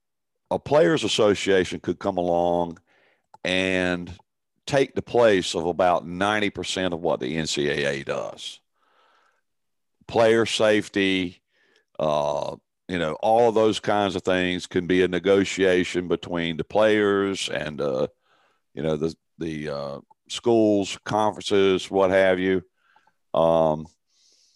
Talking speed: 120 wpm